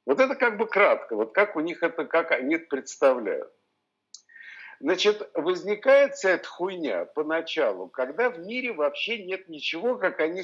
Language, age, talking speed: Russian, 50-69, 155 wpm